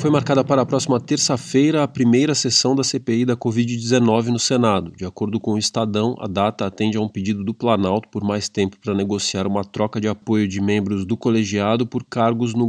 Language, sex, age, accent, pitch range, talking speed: Portuguese, male, 20-39, Brazilian, 105-120 Hz, 210 wpm